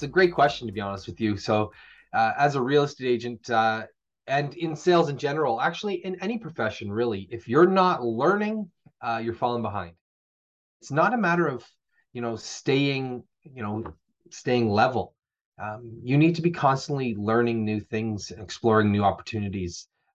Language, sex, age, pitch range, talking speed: English, male, 30-49, 110-145 Hz, 175 wpm